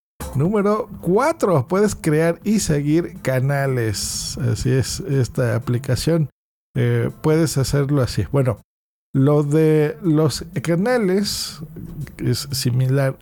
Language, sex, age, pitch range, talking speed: Spanish, male, 50-69, 125-160 Hz, 105 wpm